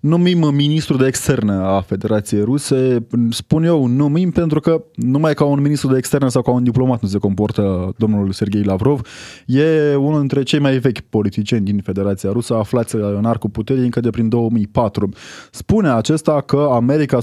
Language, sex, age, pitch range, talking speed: Romanian, male, 20-39, 115-145 Hz, 180 wpm